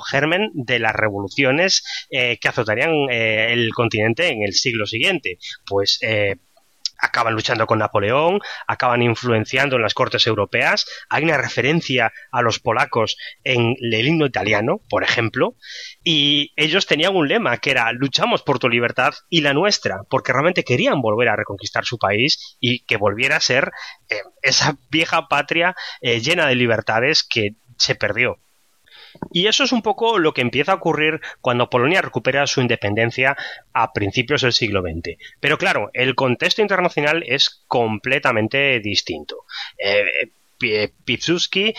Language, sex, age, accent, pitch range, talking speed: English, male, 20-39, Spanish, 115-150 Hz, 150 wpm